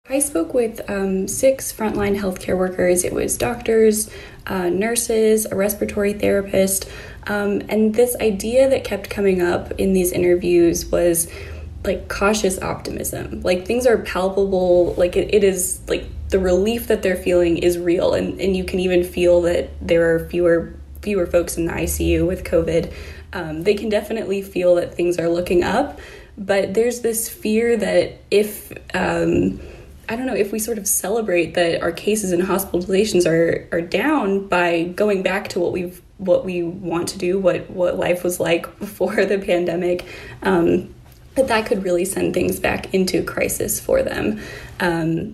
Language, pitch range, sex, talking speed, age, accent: English, 175-210 Hz, female, 170 wpm, 10-29, American